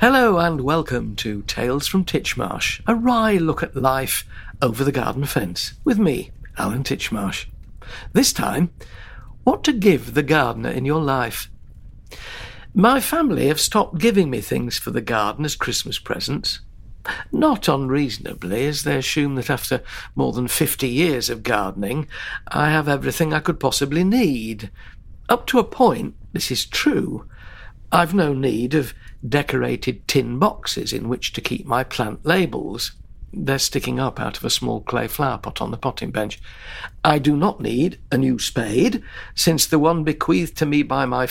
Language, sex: English, male